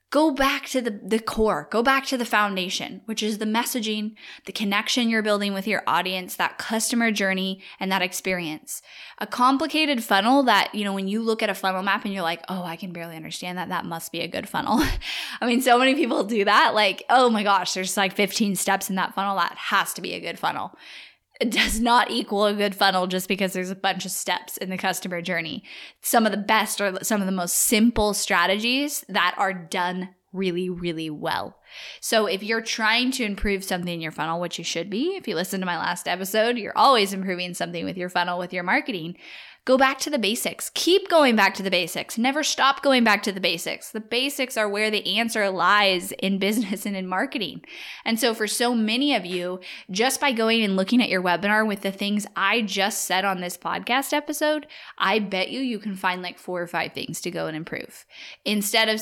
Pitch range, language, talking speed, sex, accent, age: 185-230 Hz, English, 225 wpm, female, American, 10-29